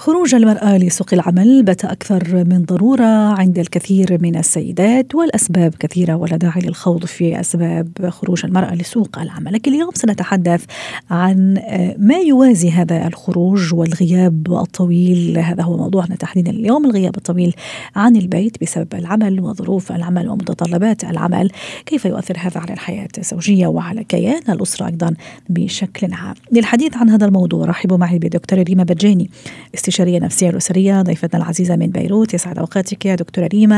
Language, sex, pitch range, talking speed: Arabic, female, 175-205 Hz, 145 wpm